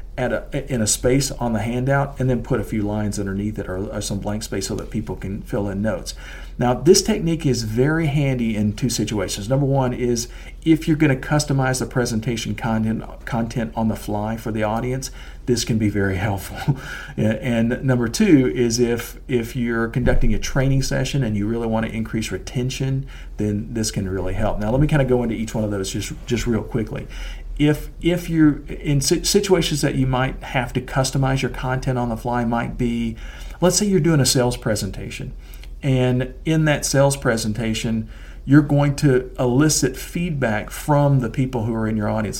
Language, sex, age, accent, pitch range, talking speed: English, male, 50-69, American, 110-135 Hz, 195 wpm